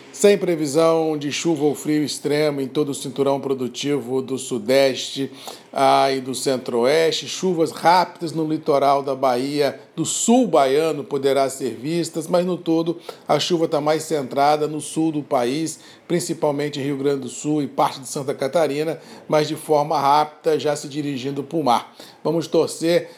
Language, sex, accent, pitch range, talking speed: Portuguese, male, Brazilian, 145-170 Hz, 170 wpm